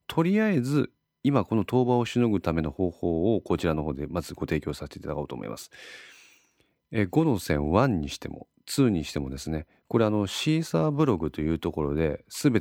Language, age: Japanese, 40-59